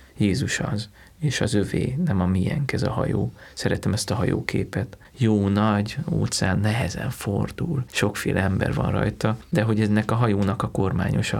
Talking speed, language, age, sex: 165 wpm, Hungarian, 30-49, male